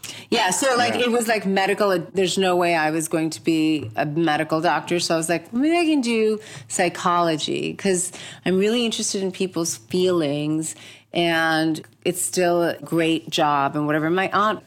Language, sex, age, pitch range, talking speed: English, female, 30-49, 165-215 Hz, 180 wpm